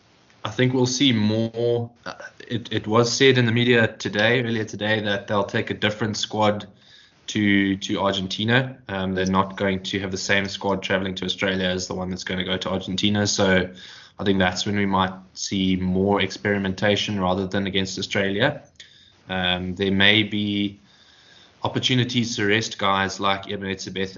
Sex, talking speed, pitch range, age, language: male, 175 wpm, 95-105 Hz, 20-39, English